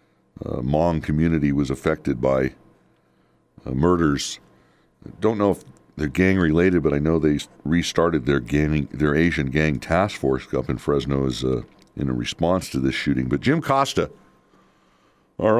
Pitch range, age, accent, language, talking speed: 70-90 Hz, 60-79, American, English, 155 wpm